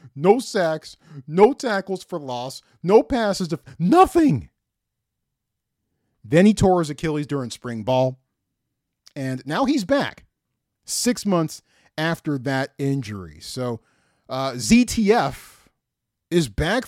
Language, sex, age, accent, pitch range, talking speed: English, male, 40-59, American, 115-180 Hz, 115 wpm